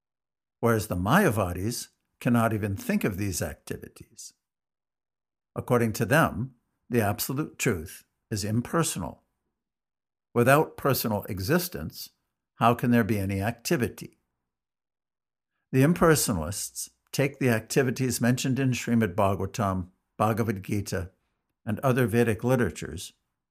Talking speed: 105 wpm